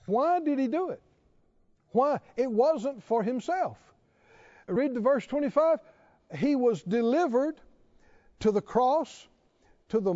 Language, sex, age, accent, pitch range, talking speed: English, male, 60-79, American, 220-300 Hz, 130 wpm